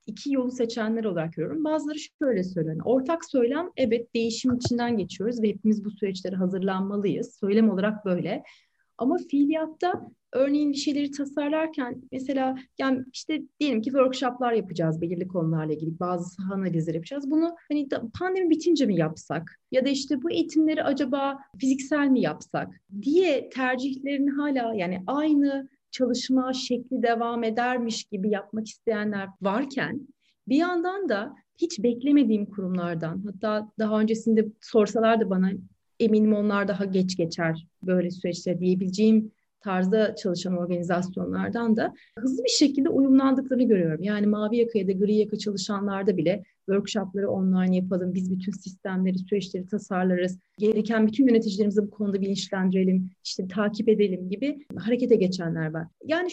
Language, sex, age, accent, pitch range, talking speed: Turkish, female, 30-49, native, 195-270 Hz, 135 wpm